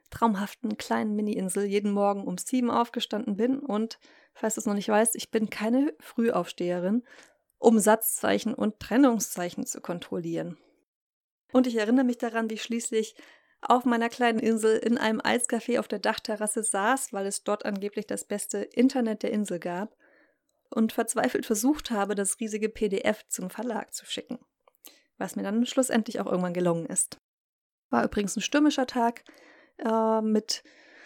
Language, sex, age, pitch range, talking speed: German, female, 30-49, 205-240 Hz, 155 wpm